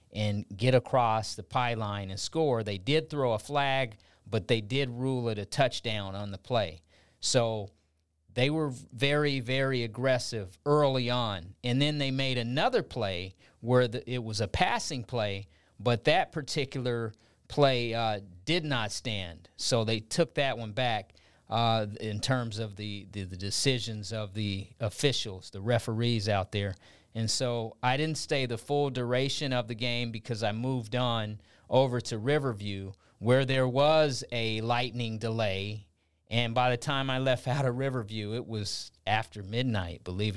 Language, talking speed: English, 165 wpm